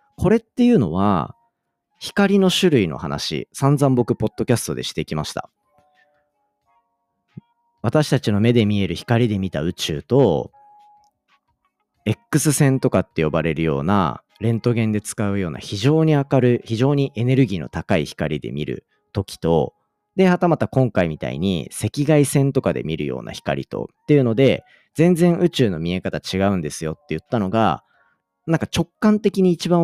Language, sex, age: Japanese, male, 40-59